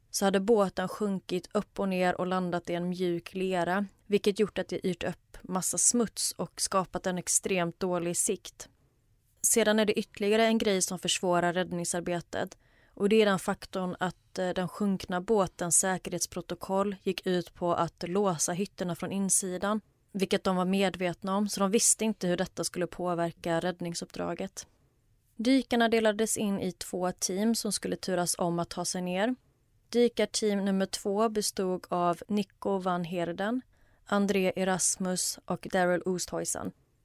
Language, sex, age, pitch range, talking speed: Swedish, female, 30-49, 175-205 Hz, 155 wpm